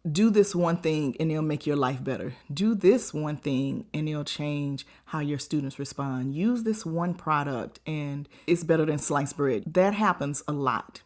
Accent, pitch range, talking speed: American, 145-195 Hz, 190 wpm